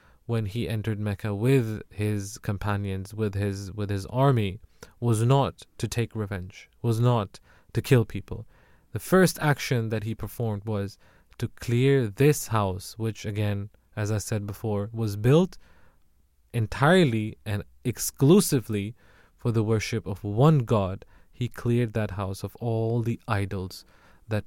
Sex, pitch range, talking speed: male, 105-120 Hz, 145 wpm